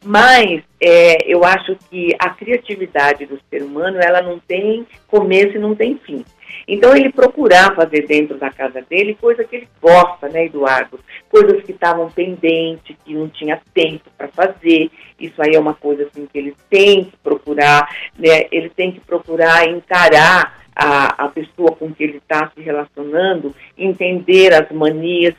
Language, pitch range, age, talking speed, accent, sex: Portuguese, 155-210 Hz, 50-69, 170 wpm, Brazilian, female